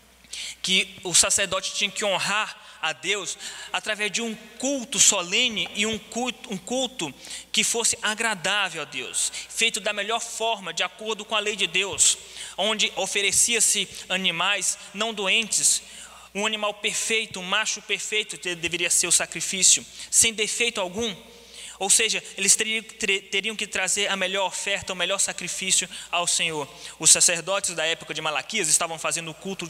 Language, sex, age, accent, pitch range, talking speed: Portuguese, male, 20-39, Brazilian, 180-215 Hz, 150 wpm